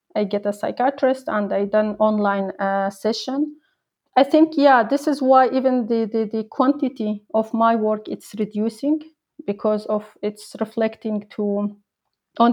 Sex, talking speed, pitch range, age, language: female, 155 wpm, 205-235 Hz, 30-49, English